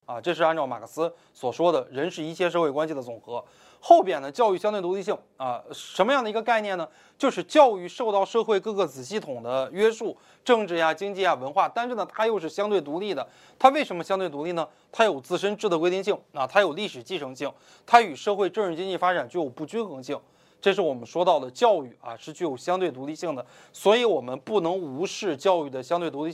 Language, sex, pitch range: Chinese, male, 145-195 Hz